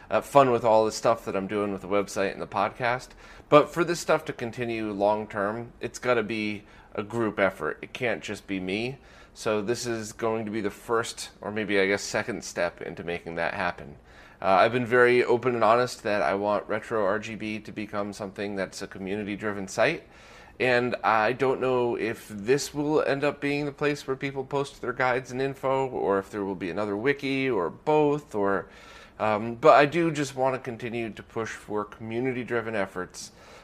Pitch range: 100-130 Hz